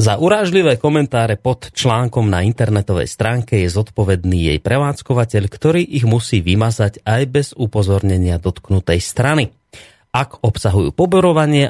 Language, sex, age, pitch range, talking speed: Slovak, male, 30-49, 105-125 Hz, 125 wpm